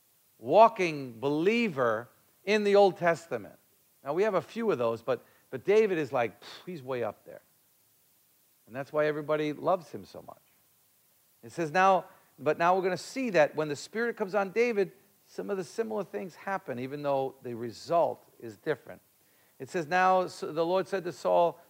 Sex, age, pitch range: male, 50-69, 130-180 Hz